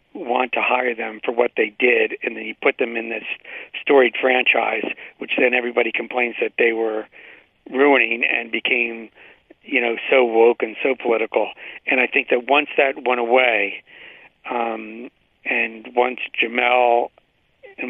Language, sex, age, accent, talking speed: English, male, 50-69, American, 160 wpm